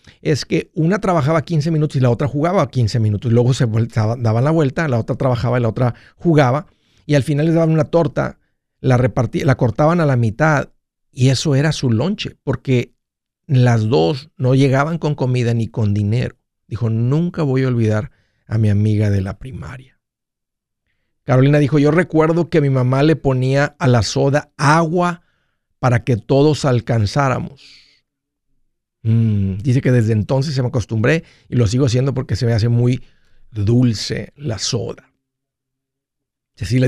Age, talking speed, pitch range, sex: 50-69, 165 wpm, 115-150 Hz, male